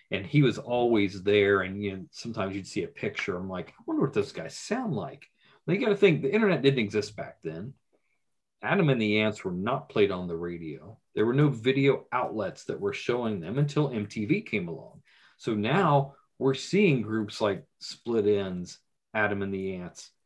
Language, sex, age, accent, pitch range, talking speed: English, male, 40-59, American, 100-130 Hz, 200 wpm